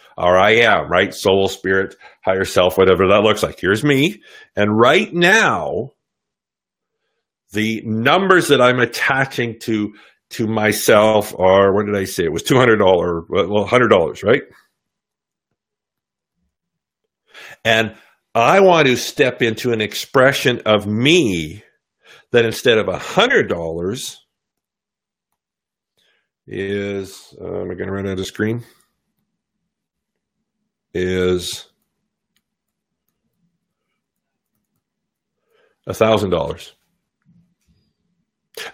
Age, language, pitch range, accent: 50-69, English, 105-150 Hz, American